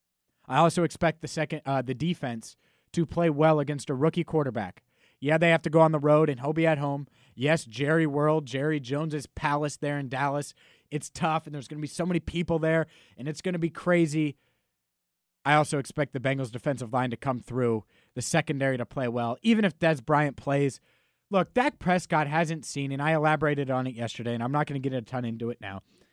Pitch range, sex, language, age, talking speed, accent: 135-165 Hz, male, English, 30-49, 220 wpm, American